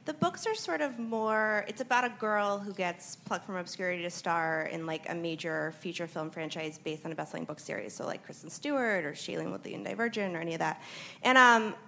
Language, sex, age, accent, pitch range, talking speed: English, female, 20-39, American, 170-235 Hz, 225 wpm